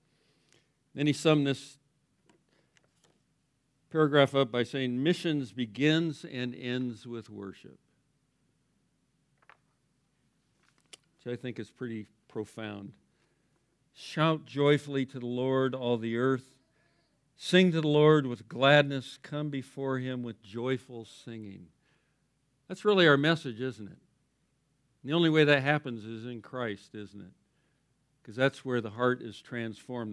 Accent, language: American, English